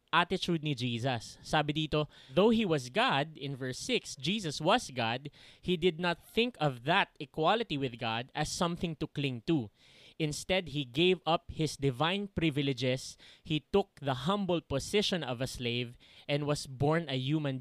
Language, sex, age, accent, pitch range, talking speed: English, male, 20-39, Filipino, 130-175 Hz, 165 wpm